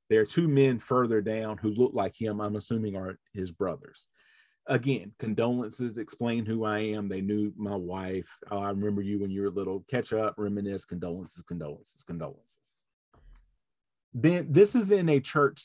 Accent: American